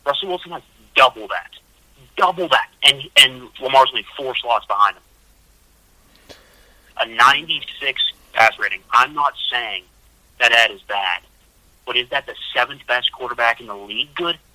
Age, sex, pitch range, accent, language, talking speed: 30-49, male, 100-150 Hz, American, English, 155 wpm